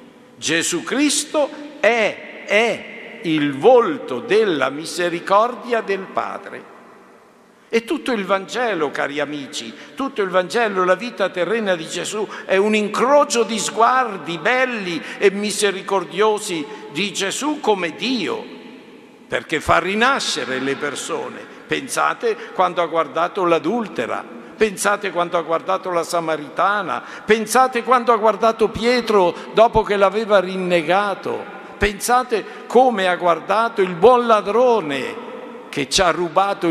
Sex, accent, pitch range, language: male, native, 170-235 Hz, Italian